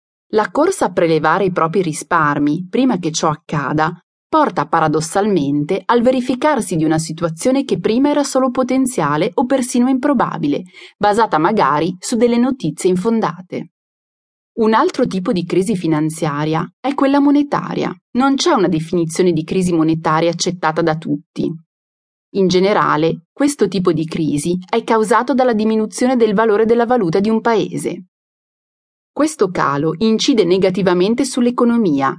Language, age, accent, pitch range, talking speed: Italian, 30-49, native, 165-245 Hz, 135 wpm